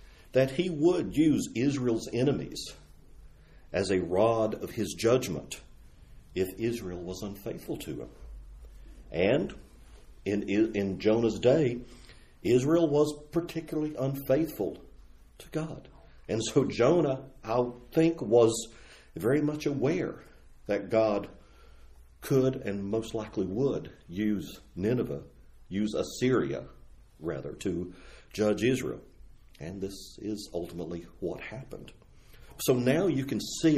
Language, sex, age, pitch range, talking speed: English, male, 50-69, 95-130 Hz, 115 wpm